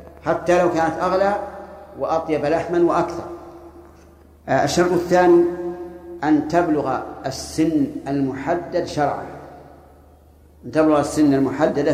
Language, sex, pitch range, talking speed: Arabic, male, 145-180 Hz, 90 wpm